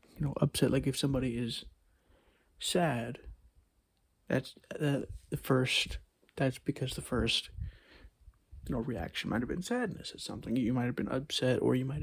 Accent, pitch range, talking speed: American, 115-145 Hz, 160 wpm